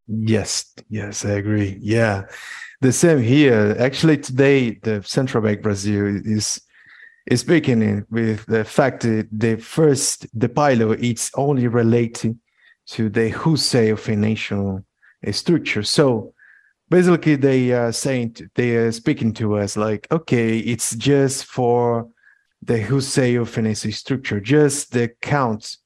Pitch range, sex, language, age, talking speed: 110-135 Hz, male, English, 50-69, 130 wpm